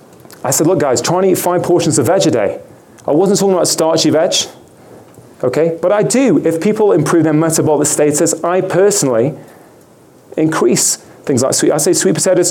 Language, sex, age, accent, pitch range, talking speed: English, male, 30-49, British, 140-185 Hz, 185 wpm